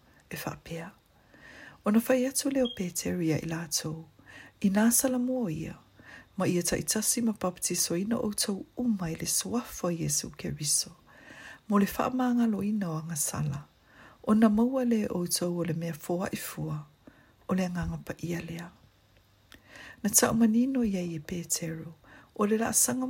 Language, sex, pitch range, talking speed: English, female, 160-220 Hz, 130 wpm